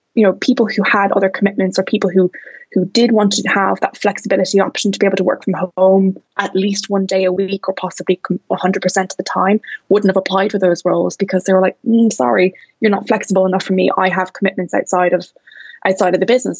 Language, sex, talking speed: English, female, 230 wpm